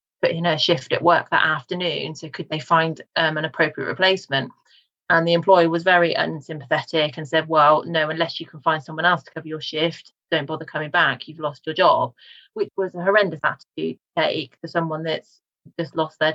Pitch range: 155-175 Hz